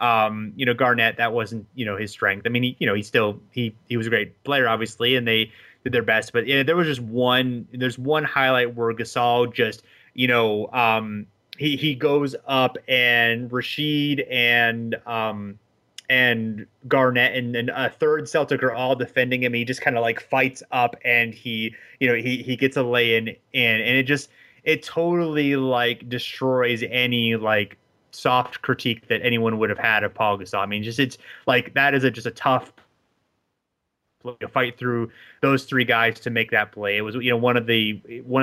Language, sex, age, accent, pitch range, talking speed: English, male, 30-49, American, 115-130 Hz, 205 wpm